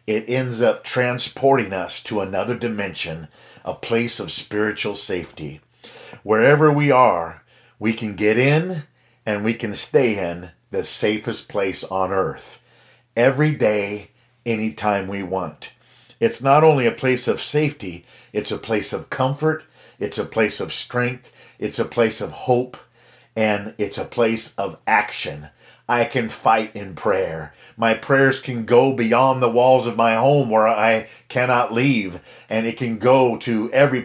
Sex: male